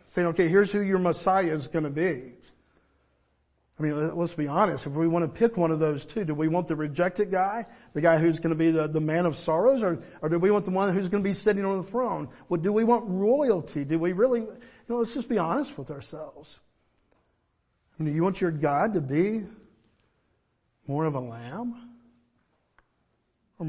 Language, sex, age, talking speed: English, male, 50-69, 220 wpm